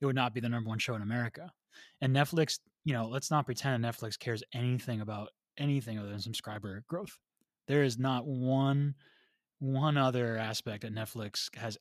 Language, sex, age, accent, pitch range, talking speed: English, male, 20-39, American, 115-135 Hz, 185 wpm